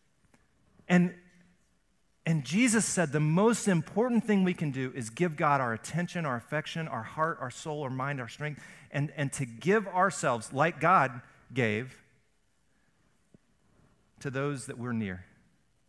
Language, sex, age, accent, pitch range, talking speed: English, male, 40-59, American, 115-150 Hz, 145 wpm